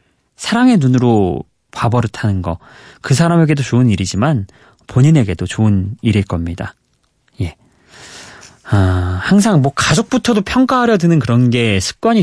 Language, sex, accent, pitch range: Korean, male, native, 105-150 Hz